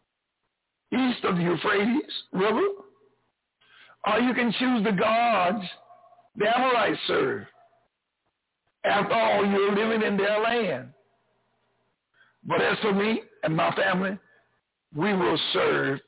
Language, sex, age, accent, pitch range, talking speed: English, male, 60-79, American, 210-315 Hz, 115 wpm